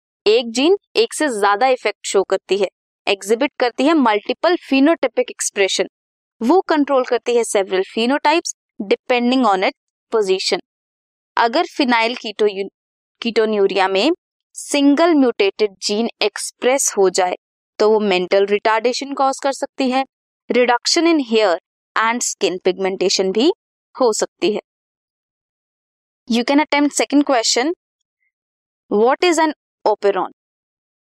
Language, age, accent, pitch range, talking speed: Hindi, 20-39, native, 200-290 Hz, 75 wpm